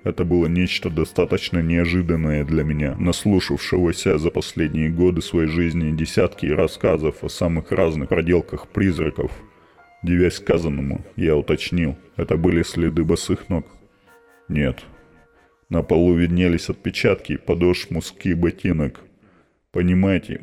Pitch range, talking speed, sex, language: 85-95 Hz, 110 wpm, male, Russian